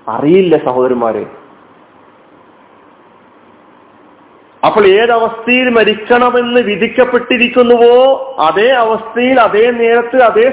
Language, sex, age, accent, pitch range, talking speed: Malayalam, male, 40-59, native, 195-245 Hz, 65 wpm